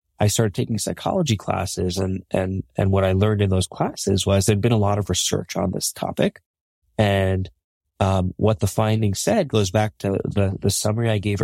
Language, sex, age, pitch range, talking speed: English, male, 30-49, 95-115 Hz, 200 wpm